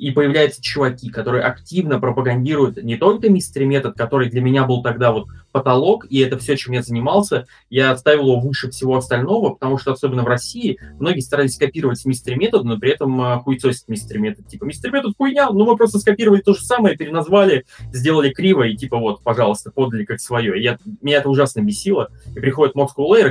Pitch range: 125-150 Hz